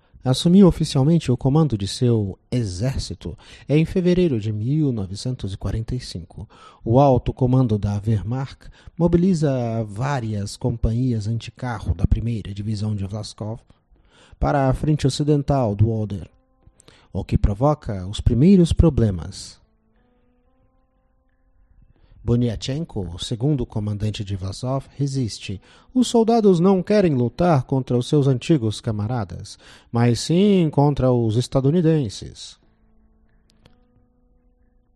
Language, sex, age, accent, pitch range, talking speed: Portuguese, male, 40-59, Brazilian, 105-140 Hz, 105 wpm